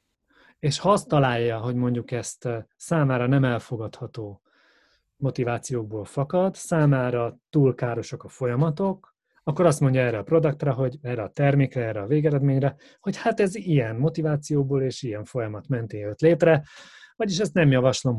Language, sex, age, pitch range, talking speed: Hungarian, male, 30-49, 120-155 Hz, 150 wpm